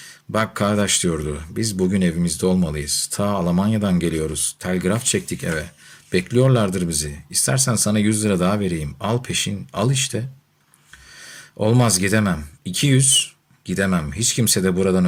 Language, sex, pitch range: Turkish, male, 85-110 Hz